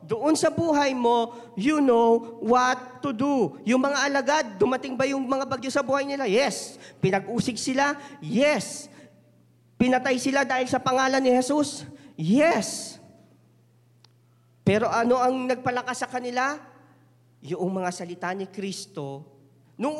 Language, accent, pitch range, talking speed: Filipino, native, 185-270 Hz, 130 wpm